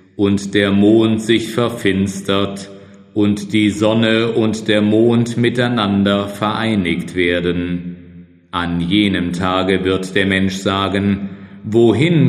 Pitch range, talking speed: 90-110 Hz, 105 wpm